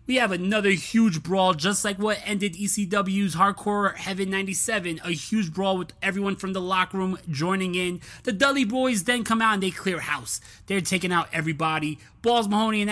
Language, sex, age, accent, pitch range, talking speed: English, male, 20-39, American, 165-210 Hz, 190 wpm